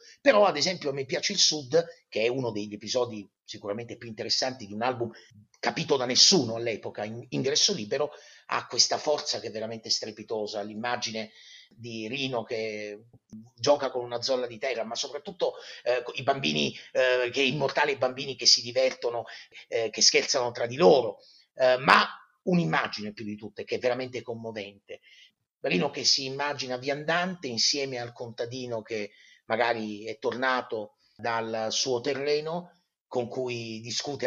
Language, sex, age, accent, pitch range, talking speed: Italian, male, 30-49, native, 115-145 Hz, 160 wpm